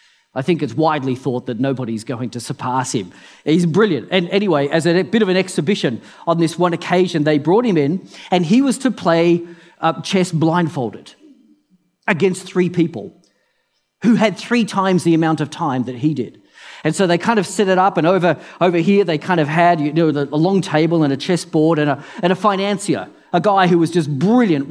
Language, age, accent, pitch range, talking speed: English, 40-59, Australian, 155-195 Hz, 200 wpm